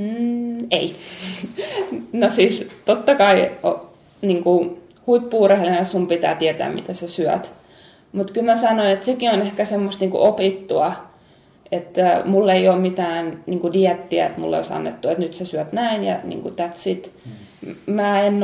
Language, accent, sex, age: Finnish, native, female, 20-39